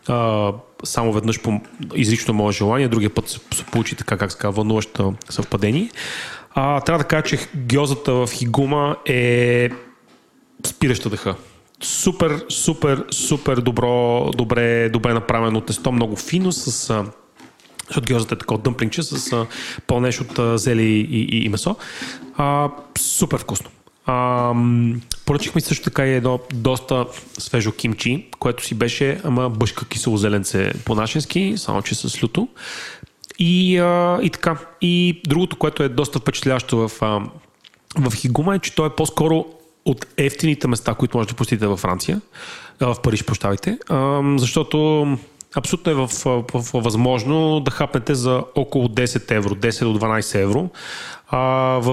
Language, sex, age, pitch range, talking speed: Bulgarian, male, 30-49, 115-140 Hz, 135 wpm